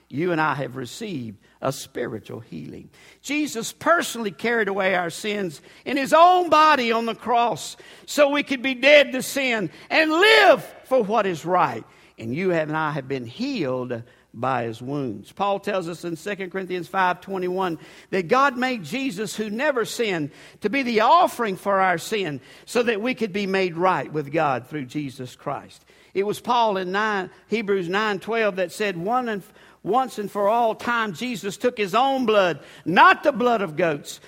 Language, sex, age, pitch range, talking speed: English, male, 50-69, 185-250 Hz, 185 wpm